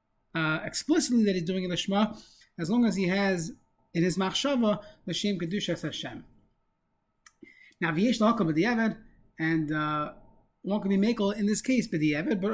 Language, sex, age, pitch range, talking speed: English, male, 30-49, 165-210 Hz, 150 wpm